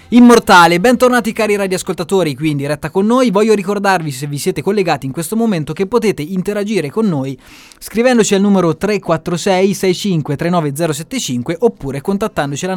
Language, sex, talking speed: Italian, male, 150 wpm